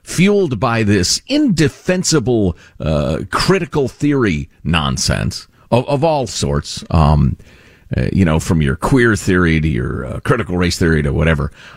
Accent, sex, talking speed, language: American, male, 145 wpm, English